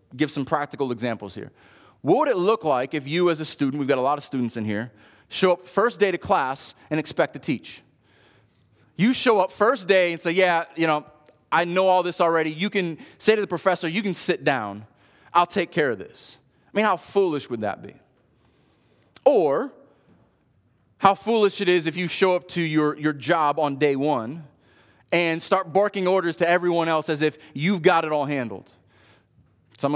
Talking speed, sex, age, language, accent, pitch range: 200 wpm, male, 30-49, English, American, 135-200 Hz